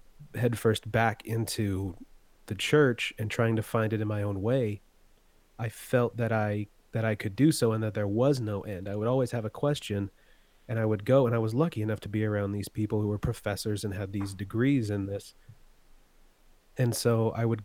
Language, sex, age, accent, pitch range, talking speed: English, male, 30-49, American, 105-125 Hz, 210 wpm